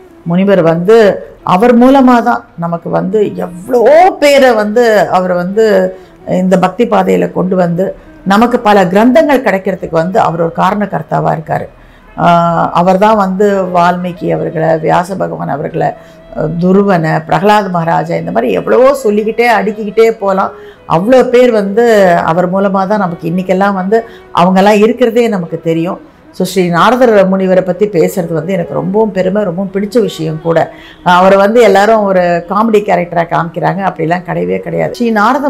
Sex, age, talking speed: female, 50-69, 135 wpm